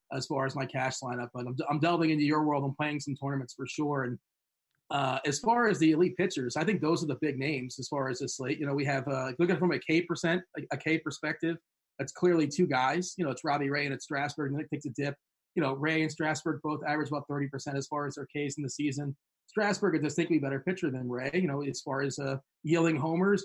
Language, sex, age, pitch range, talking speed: English, male, 30-49, 135-165 Hz, 255 wpm